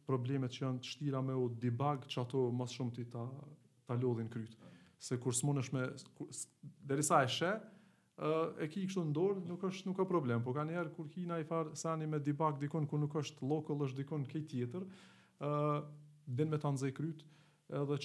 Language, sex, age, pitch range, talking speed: English, male, 30-49, 130-155 Hz, 165 wpm